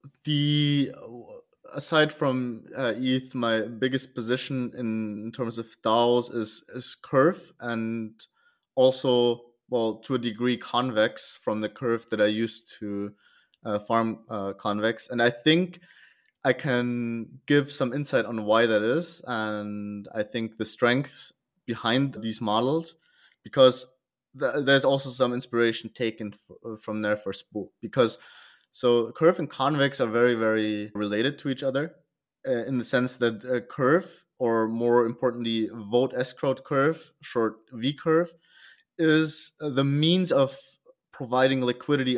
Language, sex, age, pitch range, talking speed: English, male, 20-39, 115-140 Hz, 140 wpm